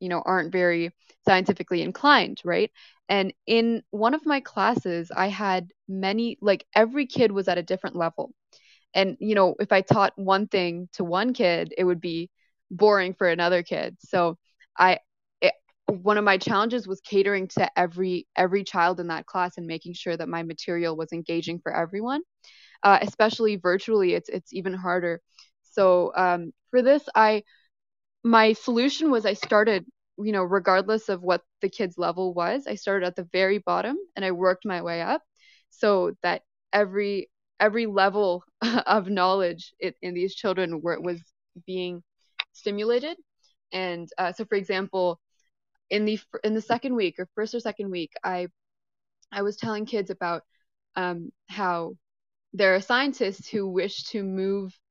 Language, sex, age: English, female, 20-39